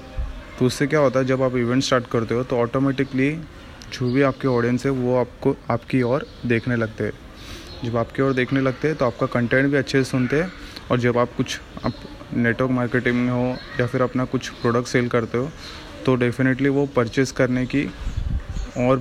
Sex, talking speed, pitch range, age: male, 200 wpm, 115-130 Hz, 20-39